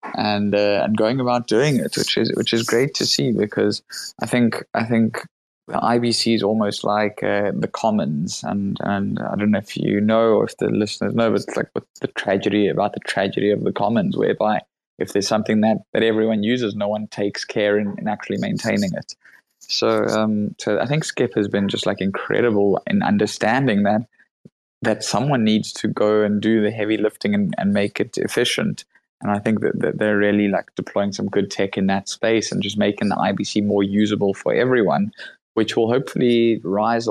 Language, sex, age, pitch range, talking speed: English, male, 20-39, 100-115 Hz, 200 wpm